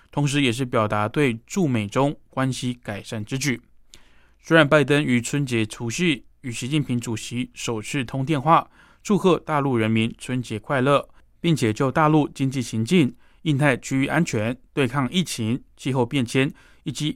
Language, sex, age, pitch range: Chinese, male, 20-39, 115-150 Hz